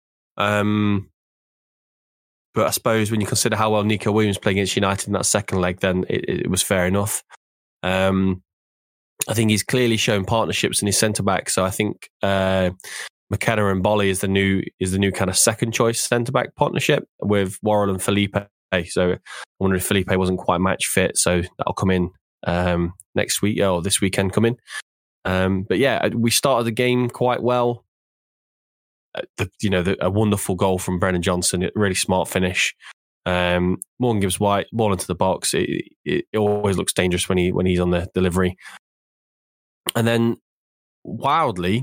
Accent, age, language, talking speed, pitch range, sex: British, 20-39, English, 180 wpm, 95-110 Hz, male